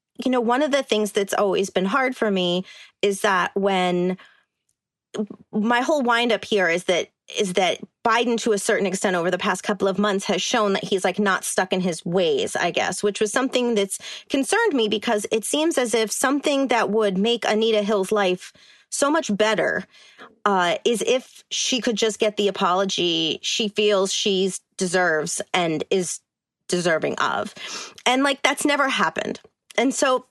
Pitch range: 195-240 Hz